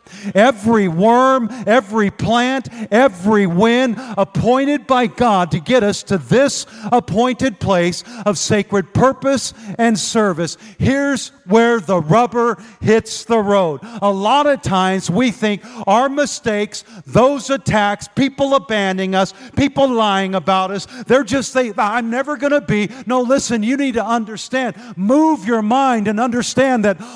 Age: 50-69